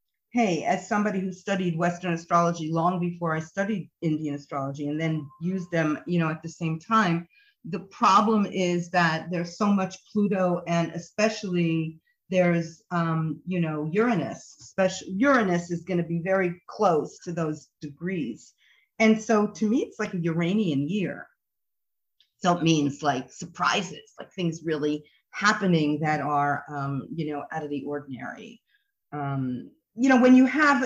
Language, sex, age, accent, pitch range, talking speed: English, female, 40-59, American, 160-205 Hz, 160 wpm